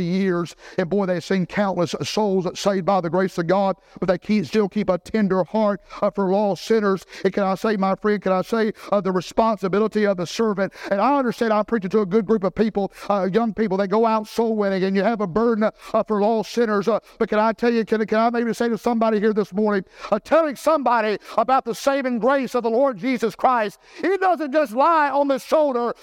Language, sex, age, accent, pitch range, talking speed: English, male, 60-79, American, 200-305 Hz, 235 wpm